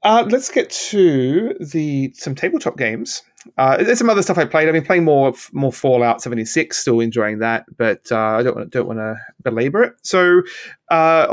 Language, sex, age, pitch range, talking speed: English, male, 30-49, 120-160 Hz, 195 wpm